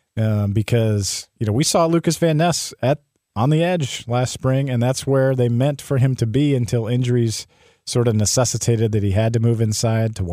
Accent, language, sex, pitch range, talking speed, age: American, English, male, 105-130 Hz, 215 wpm, 40-59